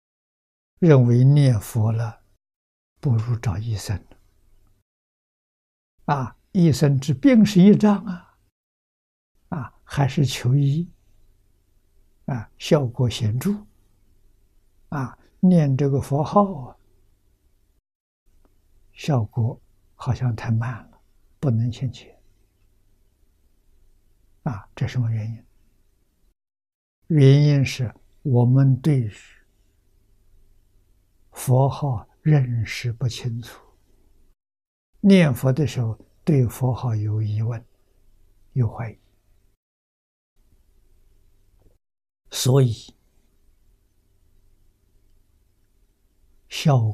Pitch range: 95-130 Hz